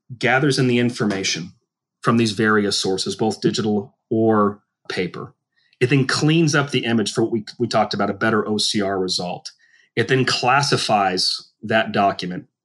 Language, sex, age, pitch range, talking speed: English, male, 30-49, 105-130 Hz, 155 wpm